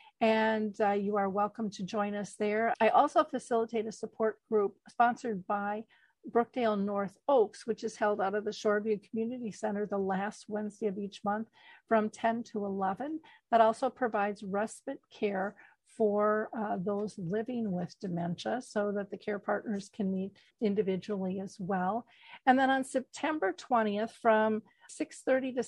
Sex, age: female, 50-69